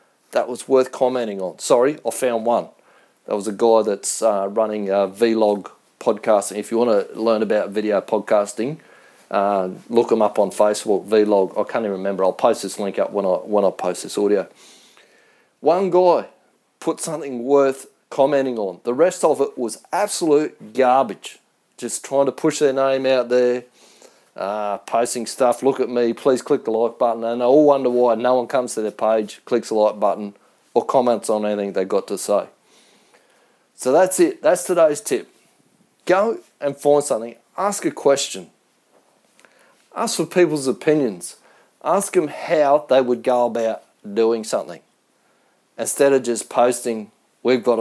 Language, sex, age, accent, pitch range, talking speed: English, male, 30-49, Australian, 110-135 Hz, 175 wpm